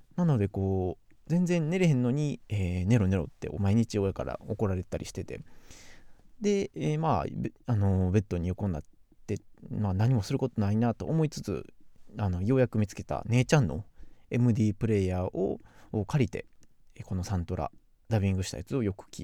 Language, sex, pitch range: Japanese, male, 100-145 Hz